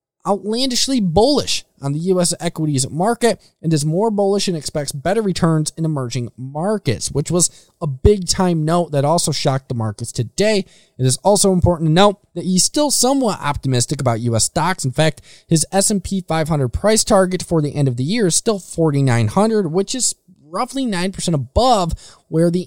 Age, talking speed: 20-39, 175 wpm